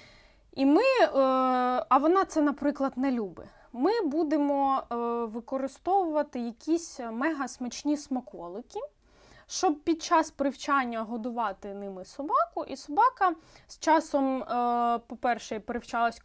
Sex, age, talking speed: female, 20-39, 100 wpm